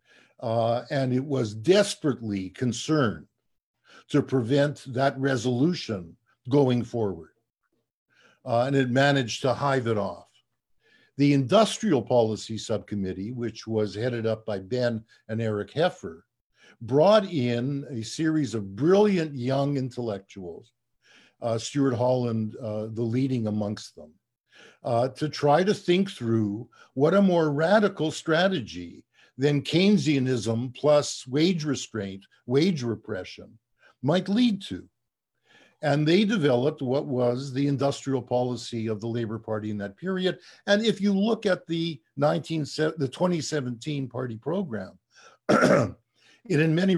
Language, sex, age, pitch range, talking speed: English, male, 50-69, 115-150 Hz, 125 wpm